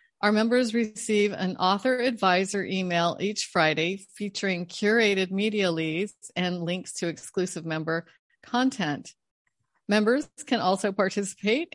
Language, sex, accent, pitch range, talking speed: English, female, American, 170-225 Hz, 120 wpm